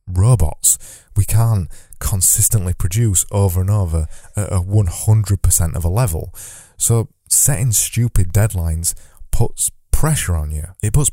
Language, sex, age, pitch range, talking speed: English, male, 20-39, 90-115 Hz, 130 wpm